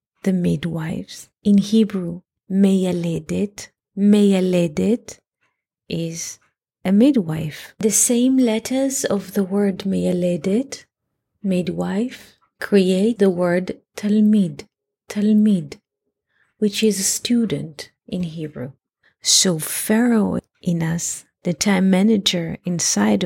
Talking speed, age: 95 wpm, 30-49